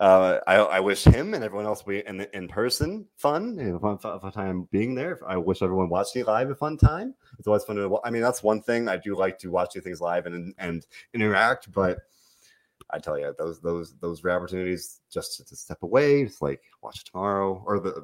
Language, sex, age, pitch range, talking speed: English, male, 30-49, 90-125 Hz, 230 wpm